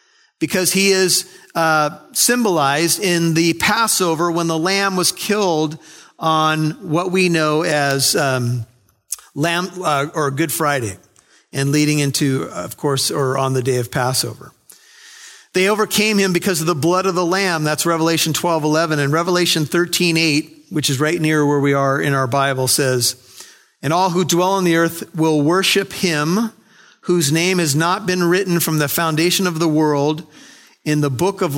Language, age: English, 50-69